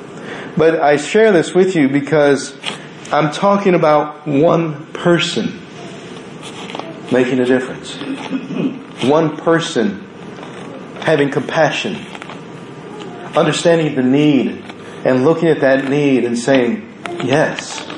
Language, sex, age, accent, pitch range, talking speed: English, male, 50-69, American, 150-190 Hz, 100 wpm